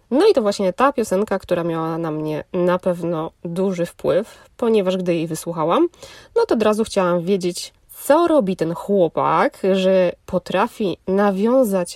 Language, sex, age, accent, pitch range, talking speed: Polish, female, 20-39, native, 170-220 Hz, 155 wpm